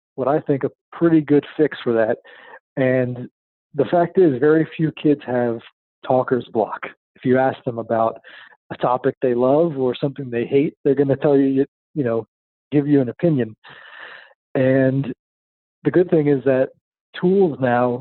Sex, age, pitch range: male, 40-59, 125-150 Hz